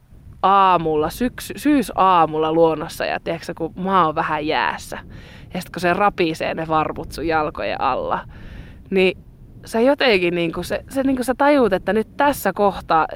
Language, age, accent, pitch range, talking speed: Finnish, 20-39, native, 165-225 Hz, 140 wpm